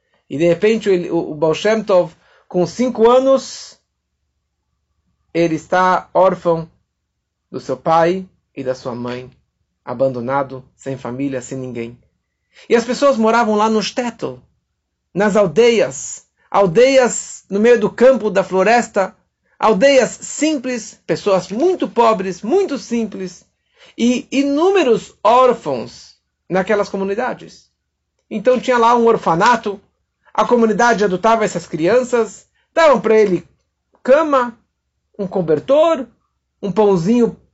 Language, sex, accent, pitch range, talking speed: Portuguese, male, Brazilian, 180-245 Hz, 110 wpm